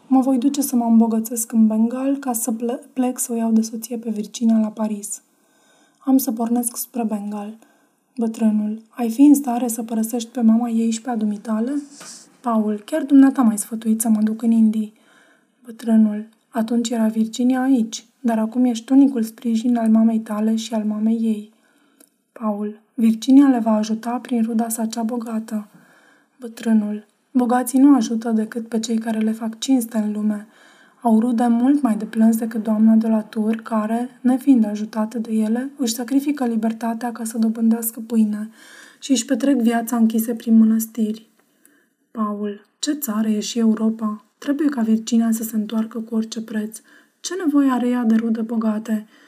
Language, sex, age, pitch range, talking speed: Romanian, female, 20-39, 220-250 Hz, 170 wpm